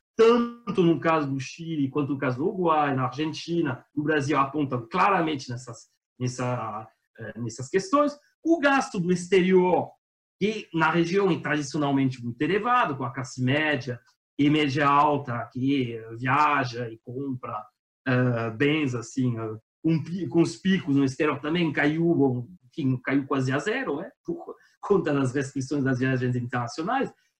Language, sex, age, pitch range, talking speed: Portuguese, male, 40-59, 130-195 Hz, 140 wpm